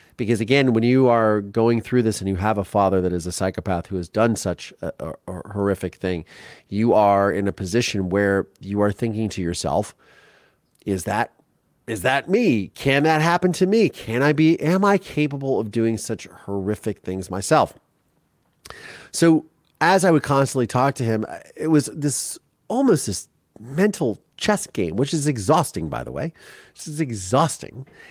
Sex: male